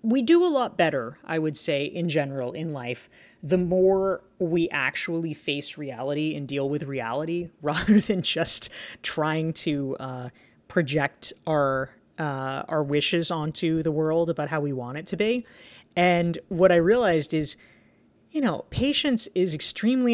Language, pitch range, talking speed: English, 140-180 Hz, 160 wpm